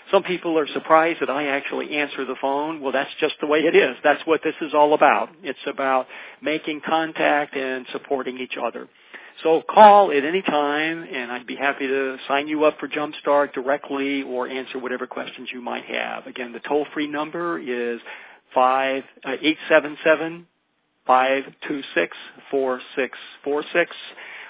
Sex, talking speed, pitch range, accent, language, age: male, 150 wpm, 135-155 Hz, American, English, 50-69